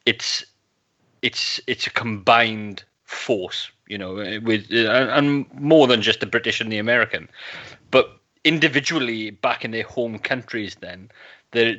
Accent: British